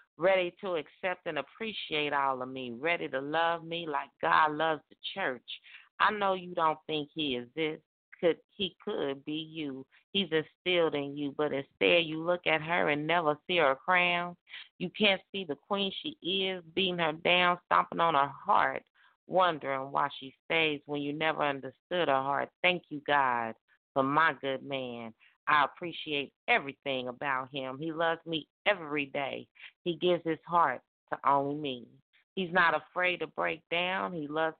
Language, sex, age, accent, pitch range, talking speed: English, female, 40-59, American, 140-175 Hz, 175 wpm